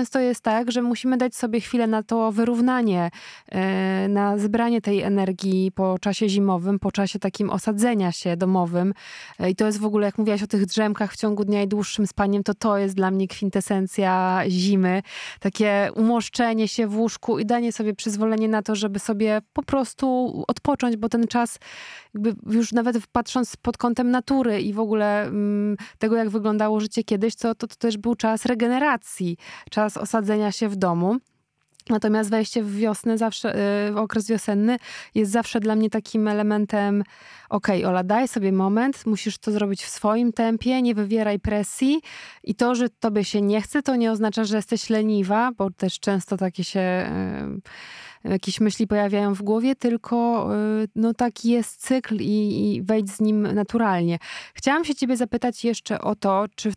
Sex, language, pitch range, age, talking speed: female, Polish, 200-230 Hz, 20-39, 175 wpm